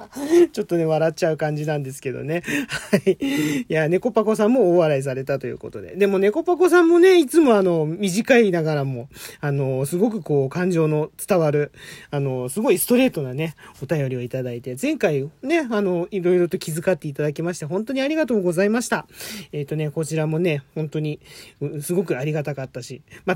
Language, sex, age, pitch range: Japanese, male, 40-59, 155-230 Hz